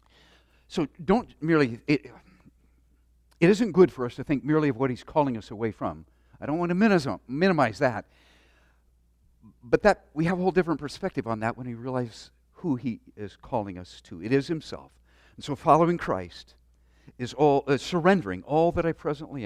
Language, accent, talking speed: English, American, 175 wpm